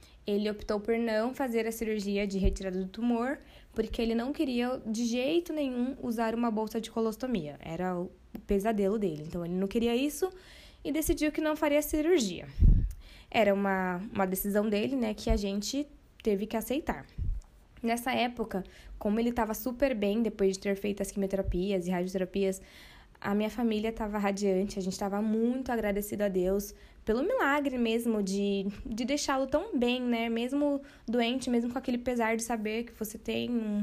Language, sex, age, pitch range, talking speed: Portuguese, female, 20-39, 205-245 Hz, 175 wpm